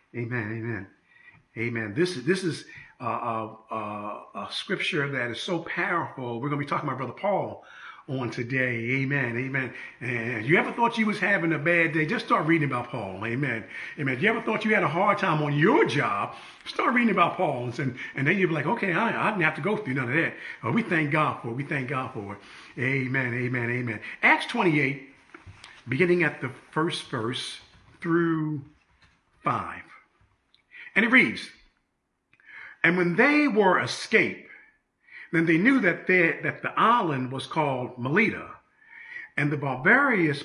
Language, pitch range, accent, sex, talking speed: English, 125-185 Hz, American, male, 180 wpm